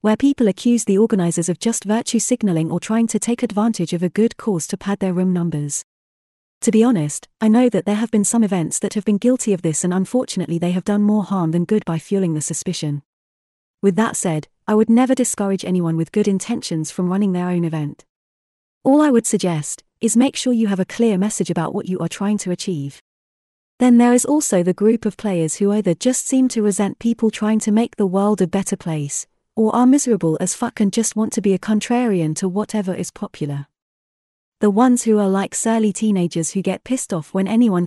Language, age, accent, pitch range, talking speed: English, 30-49, British, 175-225 Hz, 220 wpm